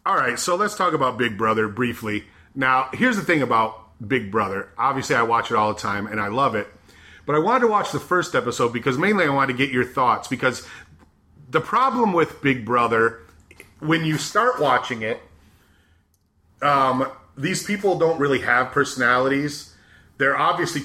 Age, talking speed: 30-49, 180 wpm